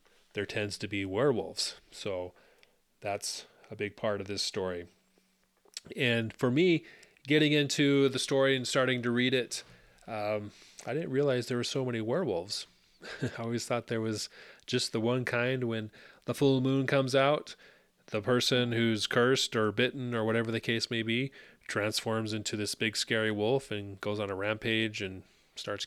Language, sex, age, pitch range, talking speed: English, male, 30-49, 105-125 Hz, 170 wpm